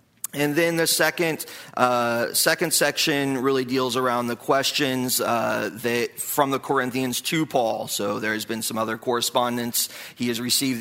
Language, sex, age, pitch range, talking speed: English, male, 40-59, 125-160 Hz, 160 wpm